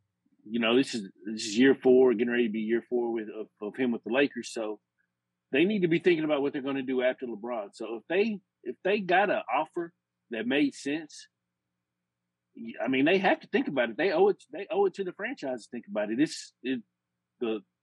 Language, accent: English, American